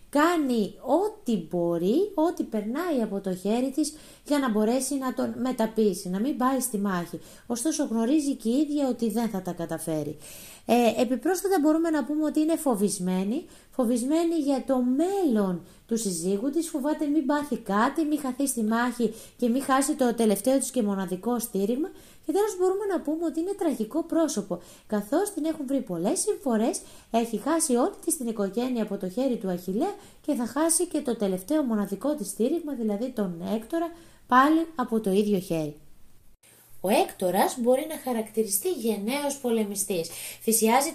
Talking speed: 165 wpm